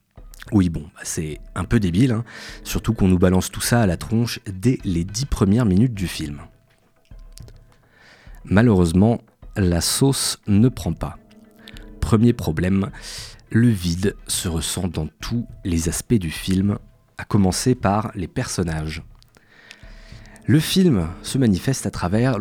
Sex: male